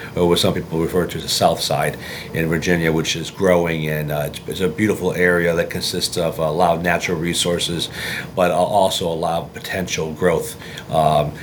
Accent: American